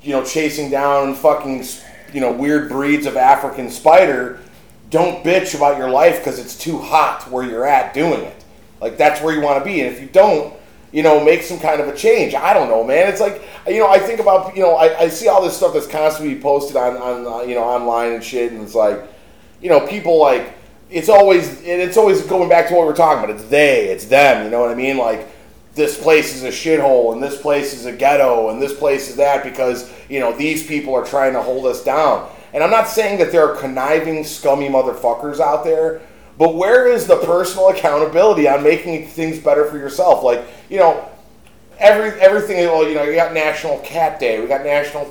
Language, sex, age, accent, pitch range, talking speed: English, male, 30-49, American, 140-175 Hz, 225 wpm